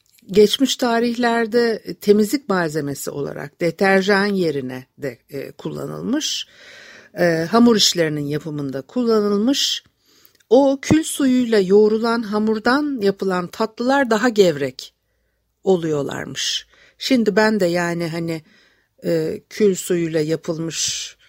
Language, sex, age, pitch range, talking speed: Turkish, female, 60-79, 165-230 Hz, 95 wpm